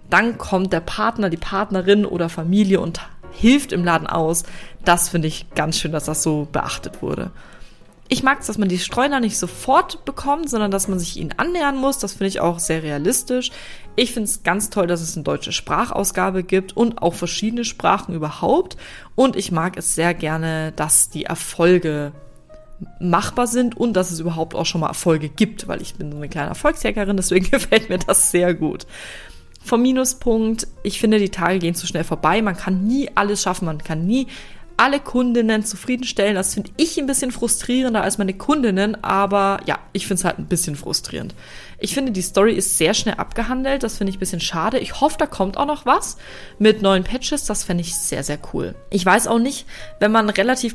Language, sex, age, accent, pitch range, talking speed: German, female, 20-39, German, 170-225 Hz, 200 wpm